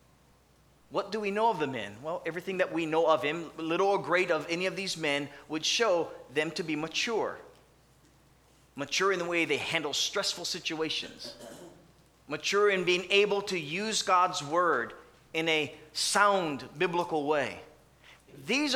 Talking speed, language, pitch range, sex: 160 wpm, English, 145-205 Hz, male